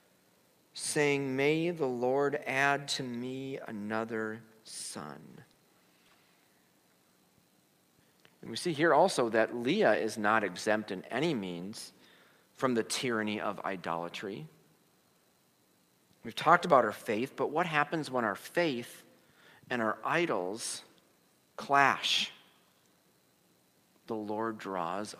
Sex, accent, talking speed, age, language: male, American, 105 wpm, 50-69, English